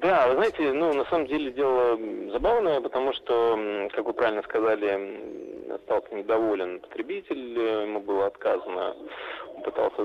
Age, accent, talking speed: 20-39, native, 135 wpm